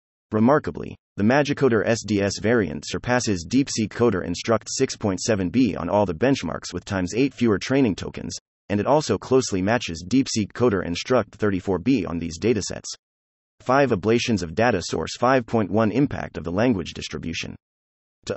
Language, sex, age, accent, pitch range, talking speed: English, male, 30-49, American, 90-120 Hz, 150 wpm